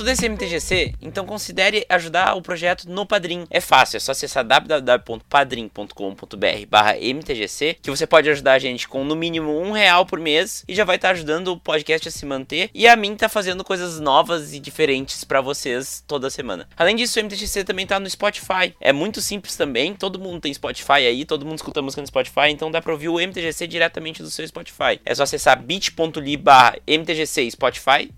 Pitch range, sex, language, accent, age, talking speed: 145-190 Hz, male, Portuguese, Brazilian, 20-39, 200 wpm